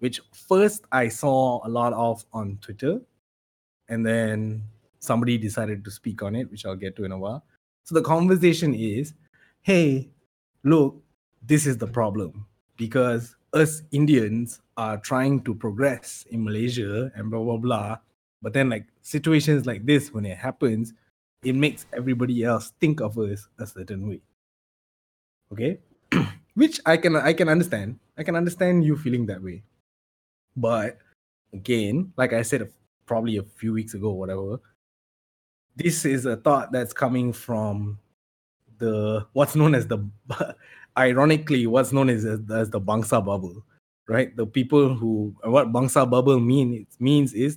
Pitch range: 105-135 Hz